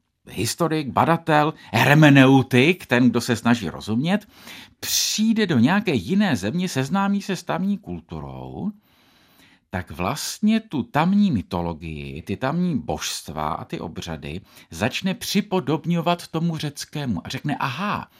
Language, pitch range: Czech, 120-185 Hz